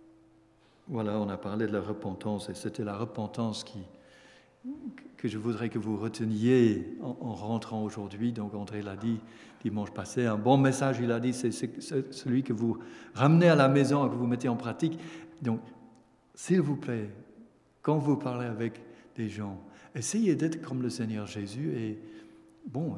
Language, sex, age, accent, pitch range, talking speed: French, male, 60-79, French, 110-155 Hz, 175 wpm